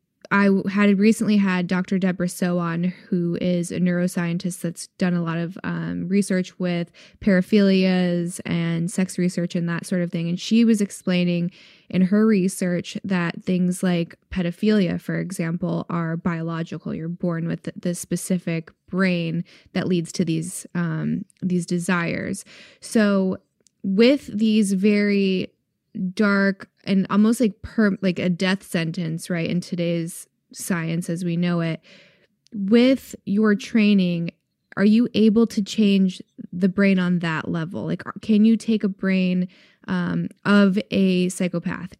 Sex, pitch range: female, 175-200 Hz